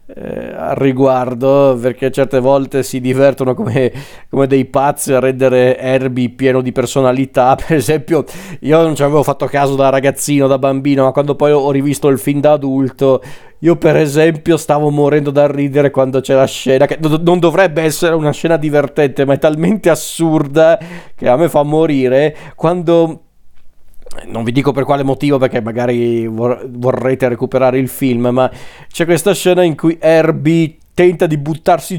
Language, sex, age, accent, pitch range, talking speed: Italian, male, 40-59, native, 130-160 Hz, 165 wpm